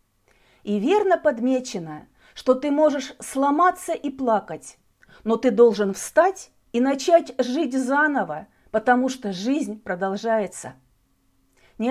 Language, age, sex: Russian, 40-59, female